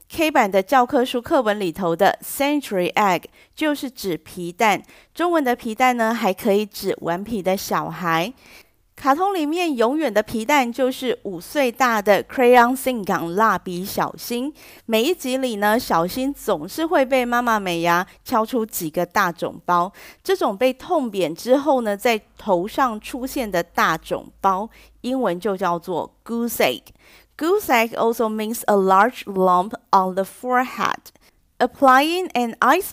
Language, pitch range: Chinese, 200-260 Hz